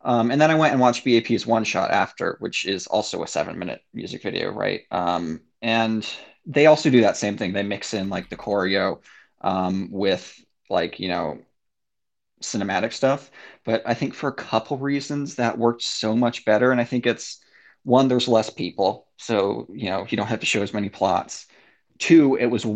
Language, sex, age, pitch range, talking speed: English, male, 20-39, 105-130 Hz, 200 wpm